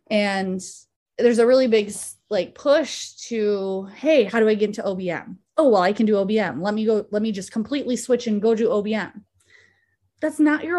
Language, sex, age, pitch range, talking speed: English, female, 20-39, 195-245 Hz, 200 wpm